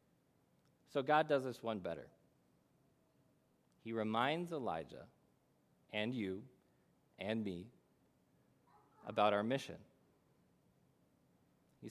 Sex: male